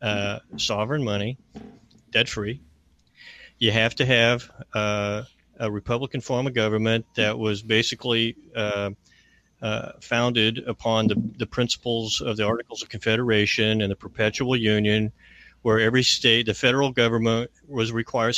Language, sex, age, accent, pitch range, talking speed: English, male, 40-59, American, 110-125 Hz, 135 wpm